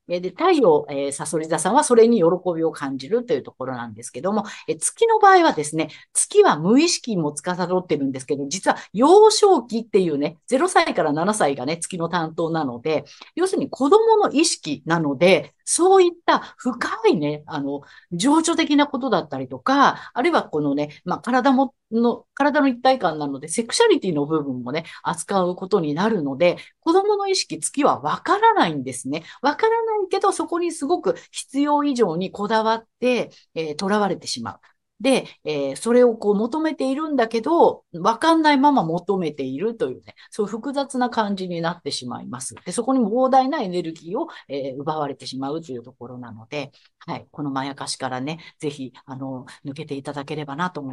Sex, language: female, Japanese